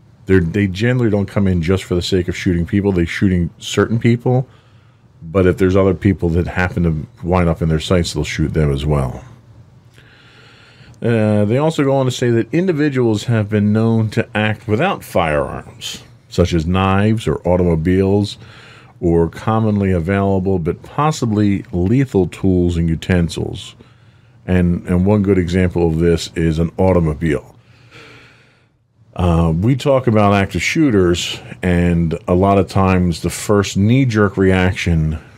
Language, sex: English, male